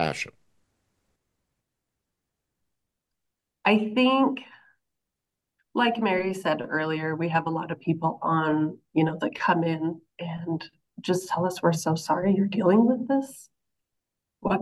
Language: English